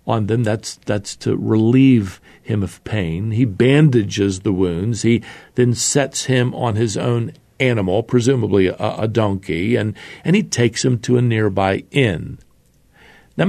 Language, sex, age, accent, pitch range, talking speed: English, male, 50-69, American, 105-145 Hz, 150 wpm